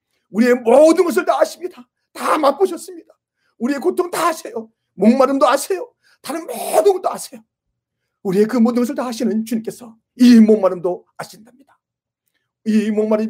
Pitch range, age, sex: 195-280 Hz, 40-59, male